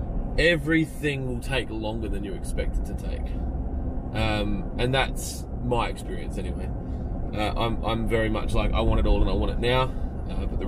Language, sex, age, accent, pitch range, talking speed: English, male, 20-39, Australian, 85-110 Hz, 190 wpm